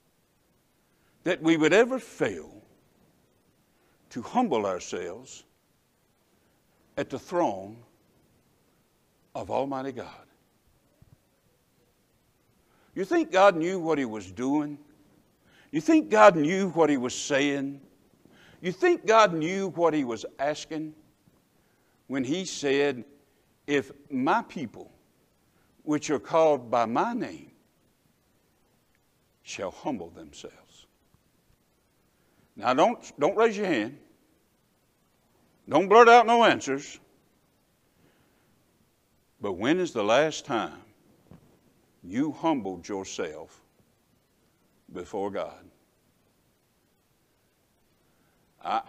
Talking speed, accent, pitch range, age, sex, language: 95 wpm, American, 135-190 Hz, 60-79, male, English